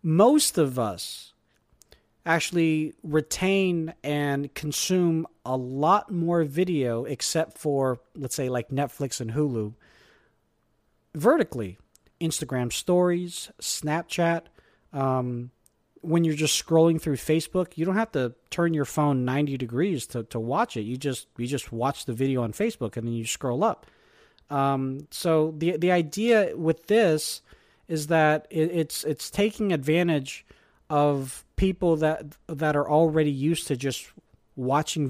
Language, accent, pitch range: English, American, 130-165 Hz